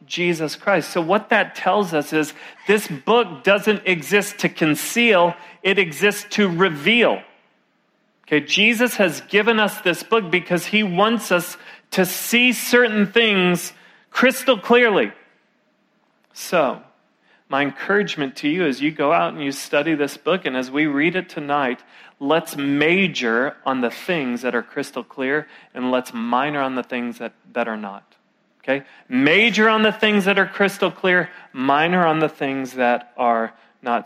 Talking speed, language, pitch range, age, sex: 160 wpm, English, 130-195 Hz, 40-59, male